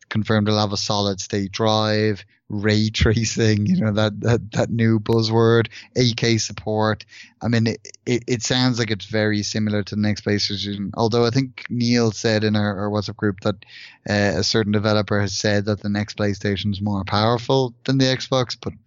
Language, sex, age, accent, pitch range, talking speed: English, male, 20-39, Irish, 105-115 Hz, 190 wpm